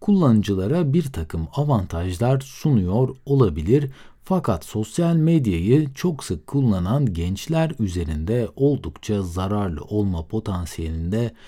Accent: native